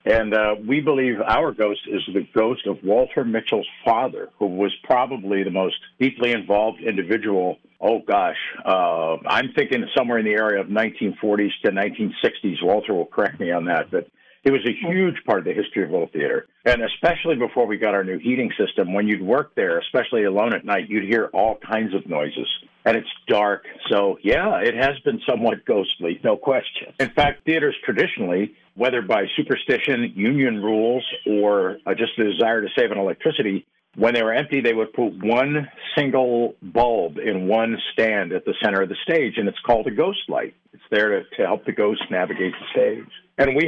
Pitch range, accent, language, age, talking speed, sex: 105-145 Hz, American, English, 60-79, 190 wpm, male